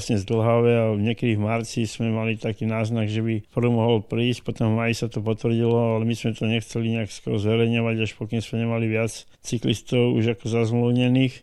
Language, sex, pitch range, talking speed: Slovak, male, 110-120 Hz, 190 wpm